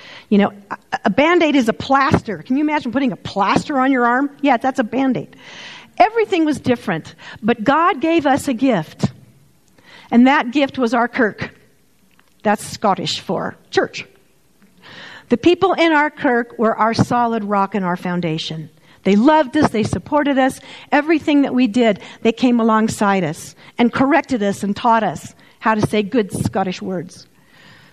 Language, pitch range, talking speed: English, 220-305 Hz, 165 wpm